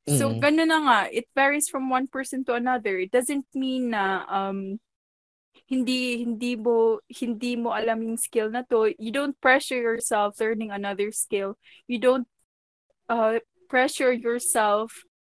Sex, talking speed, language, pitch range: female, 145 wpm, Filipino, 215-255 Hz